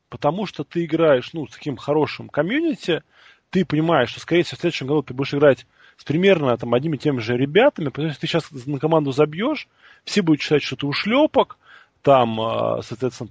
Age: 20-39